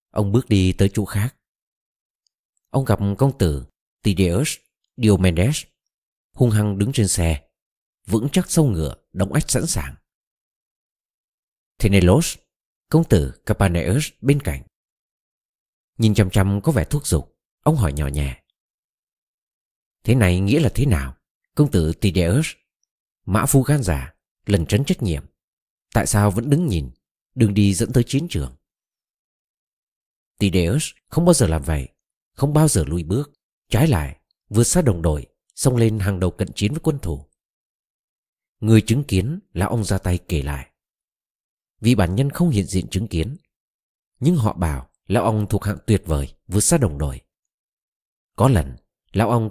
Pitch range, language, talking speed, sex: 85-125 Hz, Vietnamese, 160 wpm, male